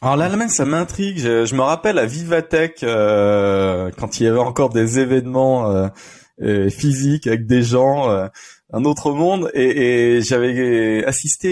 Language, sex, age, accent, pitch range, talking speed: French, male, 20-39, French, 110-145 Hz, 160 wpm